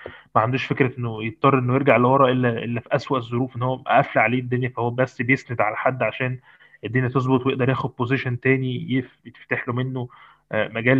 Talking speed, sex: 185 wpm, male